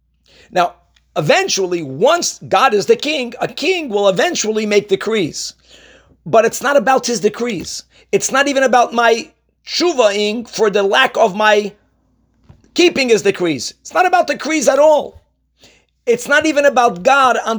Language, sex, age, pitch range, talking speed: English, male, 40-59, 185-270 Hz, 155 wpm